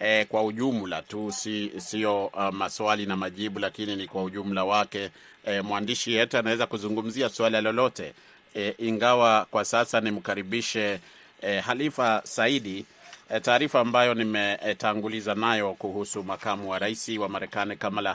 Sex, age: male, 30-49